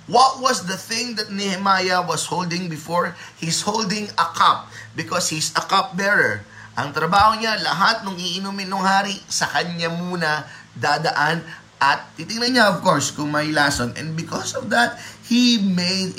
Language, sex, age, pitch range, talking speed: Filipino, male, 20-39, 140-190 Hz, 155 wpm